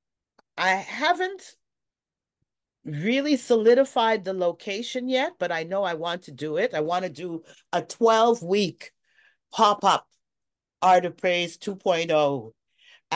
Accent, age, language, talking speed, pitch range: American, 50-69, English, 115 wpm, 150-195 Hz